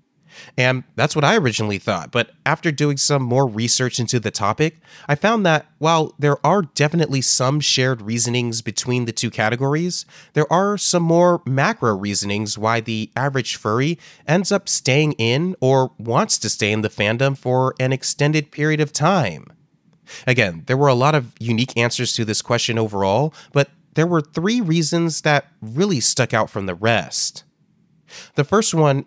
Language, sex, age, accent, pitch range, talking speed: English, male, 30-49, American, 120-160 Hz, 170 wpm